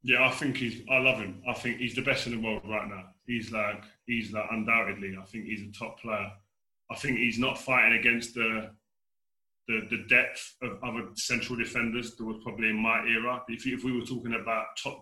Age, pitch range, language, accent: 20-39, 110-120 Hz, English, British